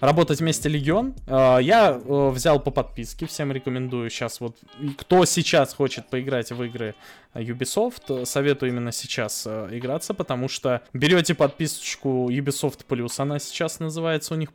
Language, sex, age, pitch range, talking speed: Russian, male, 20-39, 130-175 Hz, 135 wpm